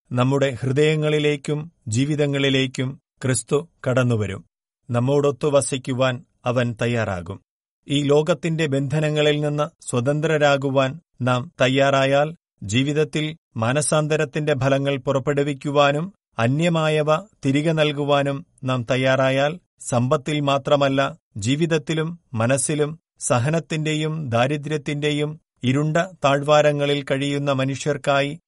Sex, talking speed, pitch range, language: male, 70 wpm, 130-150 Hz, Malayalam